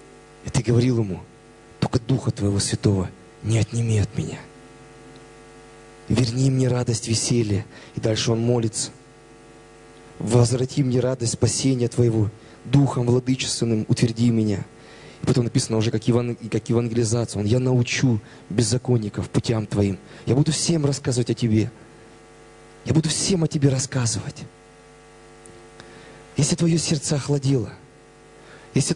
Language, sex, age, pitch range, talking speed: Russian, male, 20-39, 115-155 Hz, 125 wpm